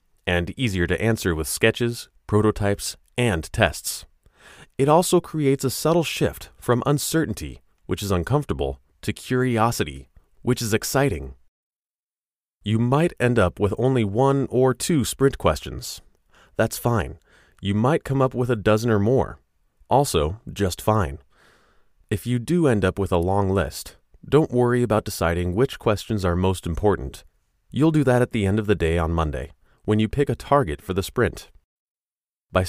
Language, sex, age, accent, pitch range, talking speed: English, male, 30-49, American, 85-125 Hz, 160 wpm